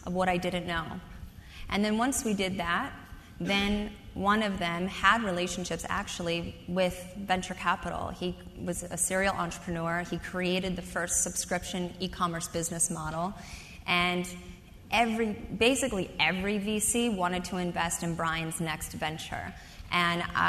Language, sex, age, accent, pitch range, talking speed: English, female, 20-39, American, 170-190 Hz, 140 wpm